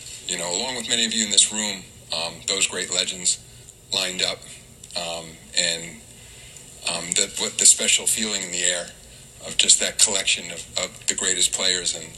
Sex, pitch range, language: male, 90-120 Hz, English